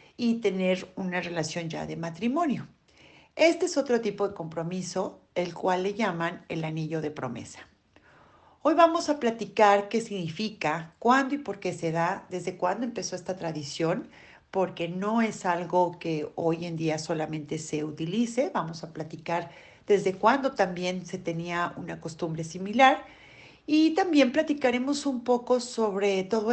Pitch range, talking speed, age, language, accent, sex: 170-230 Hz, 150 wpm, 40-59, Spanish, Mexican, female